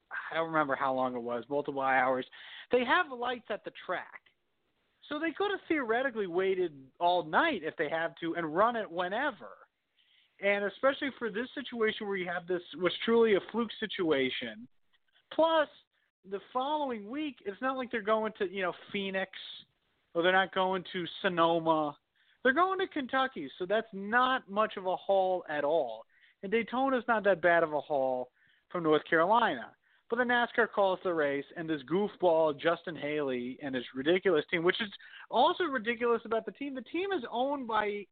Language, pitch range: English, 170-245 Hz